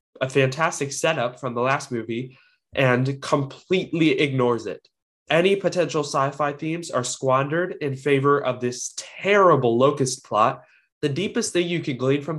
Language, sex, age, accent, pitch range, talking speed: English, male, 20-39, American, 130-160 Hz, 155 wpm